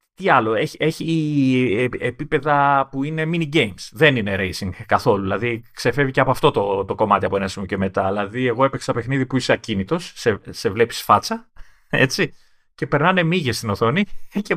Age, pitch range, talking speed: 30-49, 110-155 Hz, 185 wpm